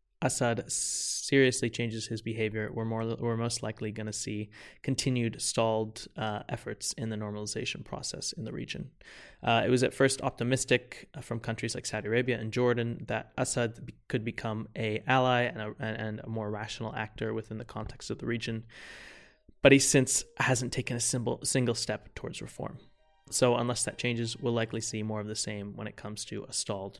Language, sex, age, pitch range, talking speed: English, male, 20-39, 110-125 Hz, 180 wpm